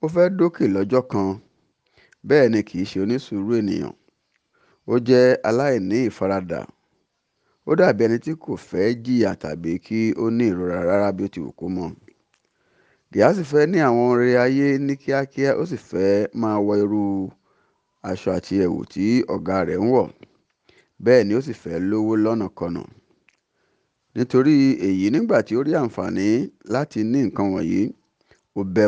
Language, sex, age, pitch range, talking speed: English, male, 50-69, 100-130 Hz, 145 wpm